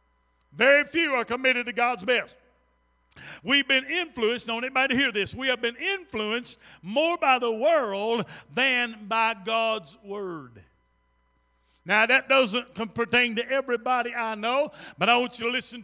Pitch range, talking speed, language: 215-265 Hz, 160 wpm, English